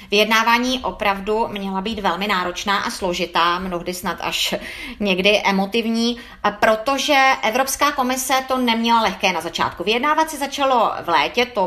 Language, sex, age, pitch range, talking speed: Czech, female, 30-49, 205-255 Hz, 140 wpm